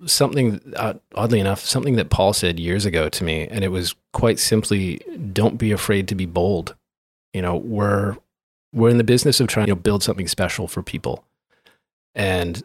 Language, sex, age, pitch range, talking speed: English, male, 30-49, 90-110 Hz, 180 wpm